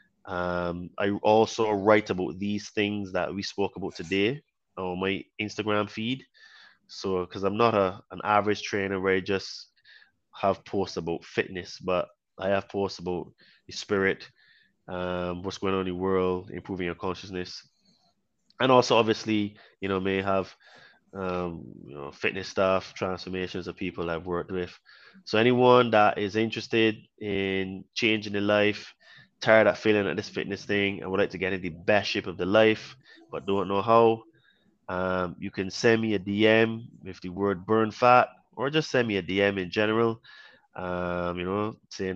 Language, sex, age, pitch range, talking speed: English, male, 20-39, 95-115 Hz, 175 wpm